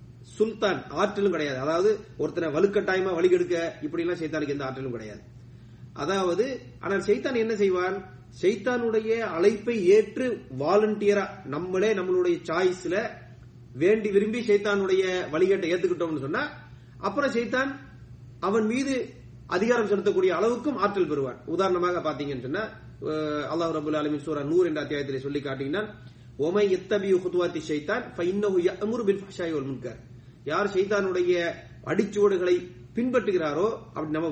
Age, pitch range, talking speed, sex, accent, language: 30-49, 145-205 Hz, 145 wpm, male, Indian, English